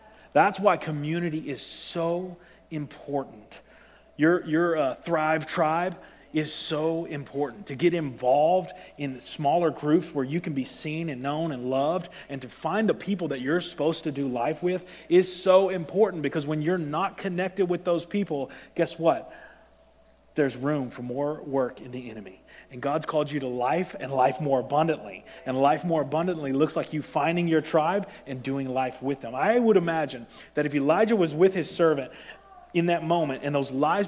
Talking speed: 180 wpm